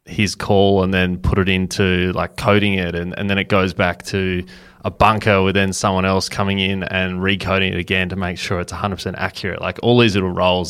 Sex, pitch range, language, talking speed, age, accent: male, 90-100 Hz, English, 230 wpm, 20-39, Australian